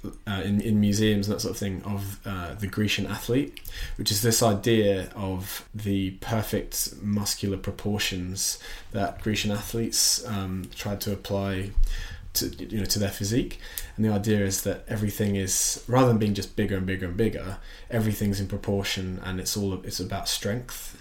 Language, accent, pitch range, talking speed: English, British, 95-105 Hz, 175 wpm